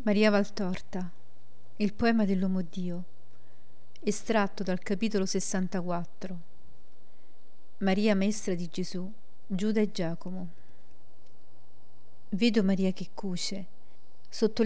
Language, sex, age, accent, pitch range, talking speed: Italian, female, 40-59, native, 175-210 Hz, 90 wpm